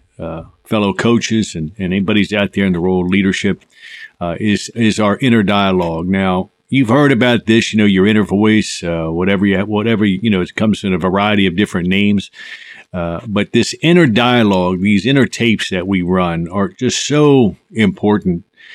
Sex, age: male, 50-69